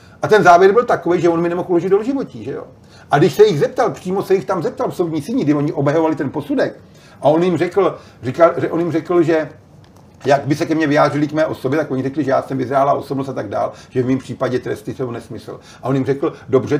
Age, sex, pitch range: 40-59, male, 135-180 Hz